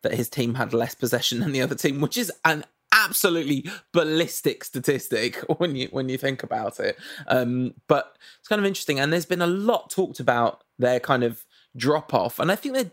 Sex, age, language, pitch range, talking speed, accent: male, 20-39, English, 130-190 Hz, 205 wpm, British